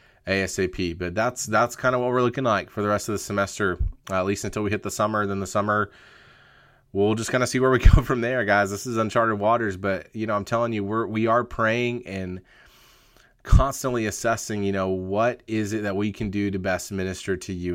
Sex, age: male, 30-49